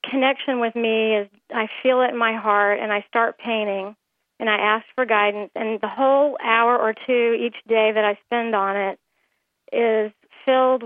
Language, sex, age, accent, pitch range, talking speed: English, female, 40-59, American, 215-250 Hz, 190 wpm